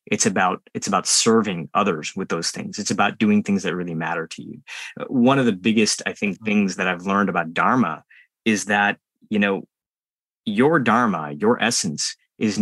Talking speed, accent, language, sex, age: 185 wpm, American, English, male, 30-49